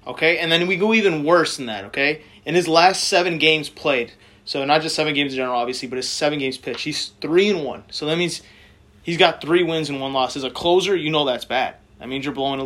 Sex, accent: male, American